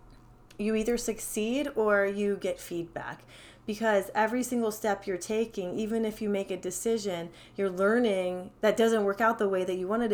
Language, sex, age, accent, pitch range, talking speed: English, female, 30-49, American, 180-220 Hz, 180 wpm